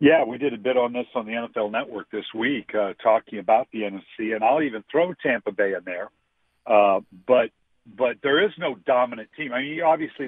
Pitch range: 110-155 Hz